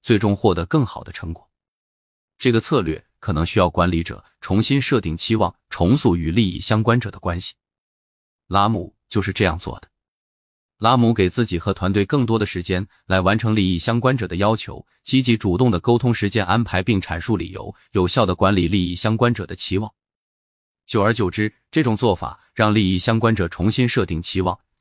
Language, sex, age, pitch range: Chinese, male, 20-39, 90-115 Hz